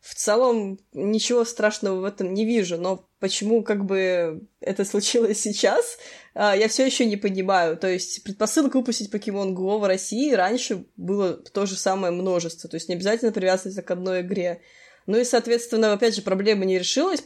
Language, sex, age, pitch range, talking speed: Russian, female, 20-39, 180-225 Hz, 175 wpm